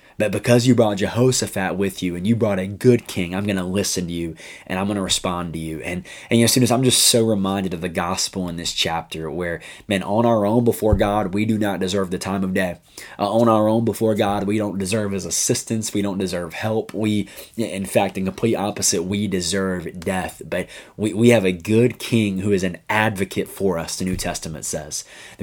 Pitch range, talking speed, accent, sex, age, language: 90-110 Hz, 235 wpm, American, male, 20-39, English